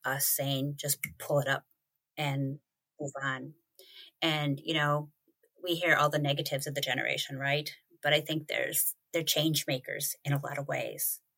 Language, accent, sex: English, American, female